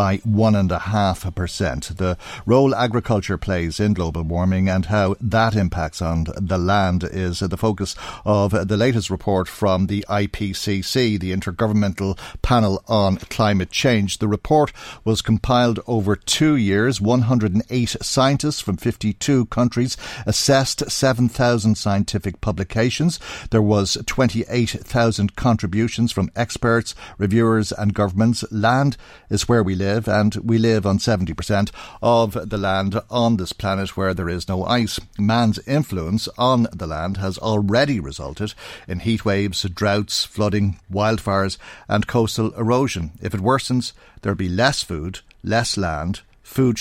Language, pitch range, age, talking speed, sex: English, 95-115 Hz, 50-69, 135 wpm, male